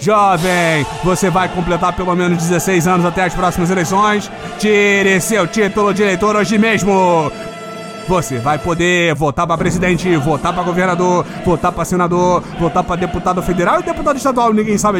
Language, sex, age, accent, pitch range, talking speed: Portuguese, male, 30-49, Brazilian, 175-205 Hz, 160 wpm